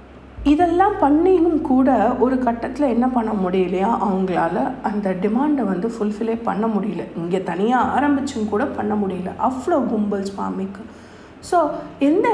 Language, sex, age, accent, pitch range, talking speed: Tamil, female, 50-69, native, 195-265 Hz, 125 wpm